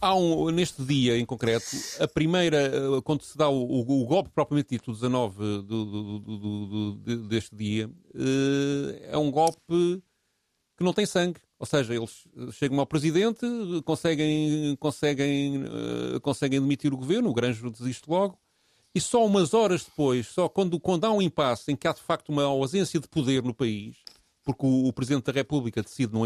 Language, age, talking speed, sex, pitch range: Portuguese, 40-59, 160 wpm, male, 125-170 Hz